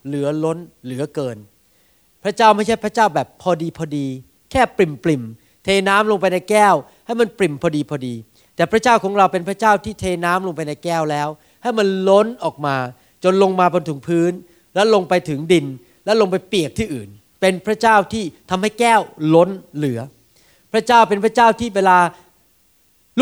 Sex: male